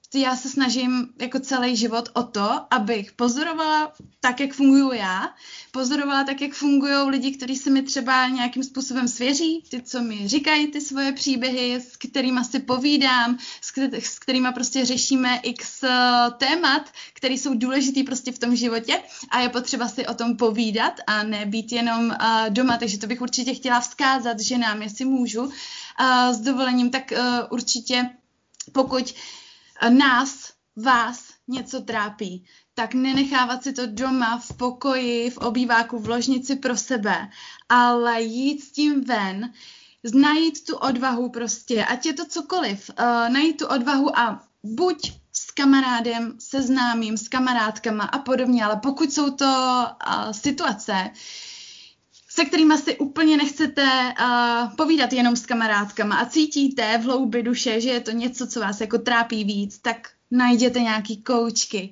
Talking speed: 150 wpm